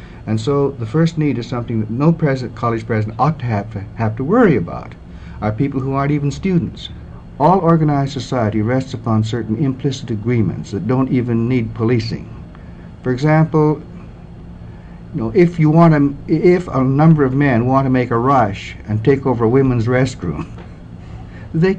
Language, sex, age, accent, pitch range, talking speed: English, male, 60-79, American, 115-155 Hz, 175 wpm